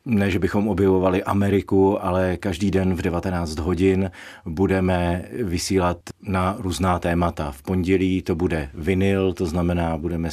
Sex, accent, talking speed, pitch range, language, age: male, native, 140 wpm, 85-95 Hz, Czech, 50-69